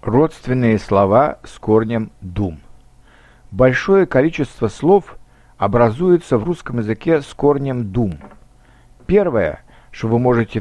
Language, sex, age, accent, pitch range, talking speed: Russian, male, 60-79, native, 110-150 Hz, 105 wpm